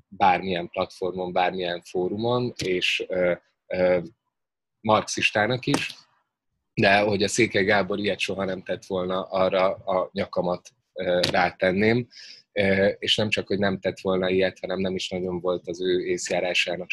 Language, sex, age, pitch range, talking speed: Hungarian, male, 20-39, 90-100 Hz, 130 wpm